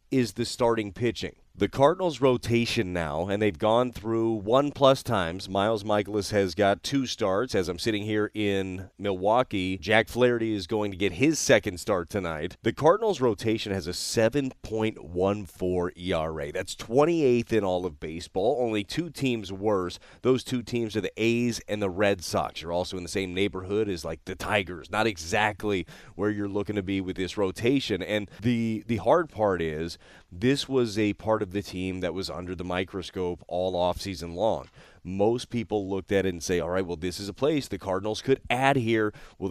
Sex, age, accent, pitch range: male, 30-49, American, 95-115 Hz